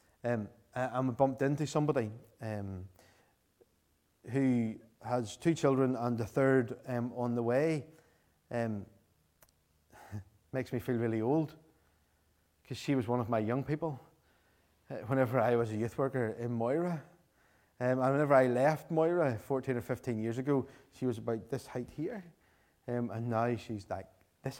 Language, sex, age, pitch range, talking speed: English, male, 30-49, 105-130 Hz, 155 wpm